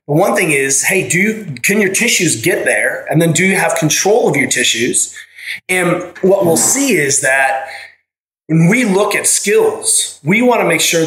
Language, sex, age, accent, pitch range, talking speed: English, male, 30-49, American, 150-195 Hz, 195 wpm